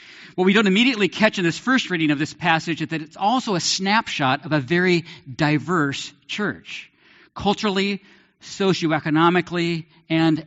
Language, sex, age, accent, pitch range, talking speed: English, male, 50-69, American, 145-185 Hz, 150 wpm